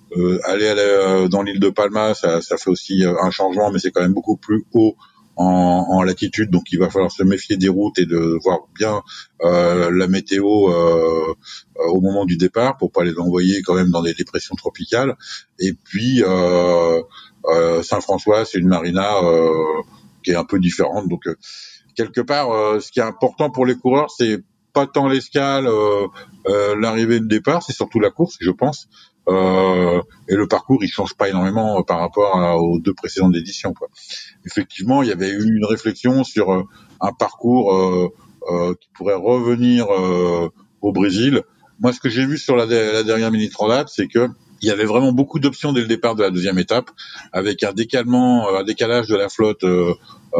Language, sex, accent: French, male, French